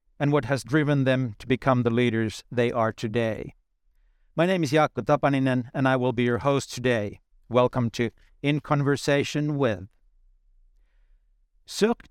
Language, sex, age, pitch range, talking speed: English, male, 60-79, 120-150 Hz, 150 wpm